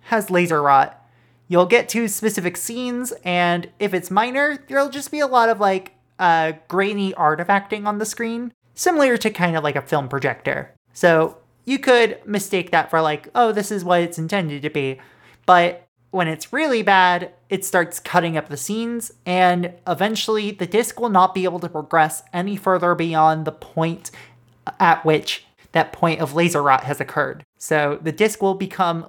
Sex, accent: male, American